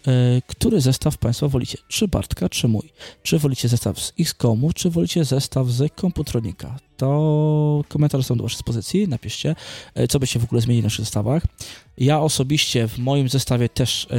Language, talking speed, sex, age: Polish, 175 wpm, male, 20-39